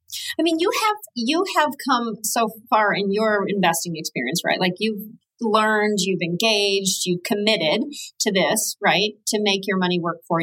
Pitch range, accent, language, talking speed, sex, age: 180-235 Hz, American, English, 180 wpm, female, 40-59